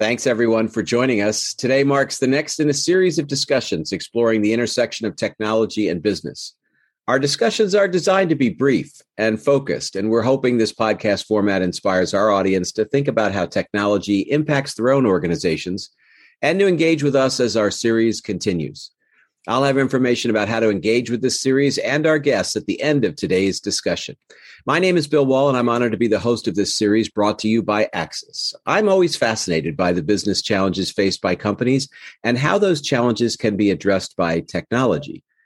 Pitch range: 105-145 Hz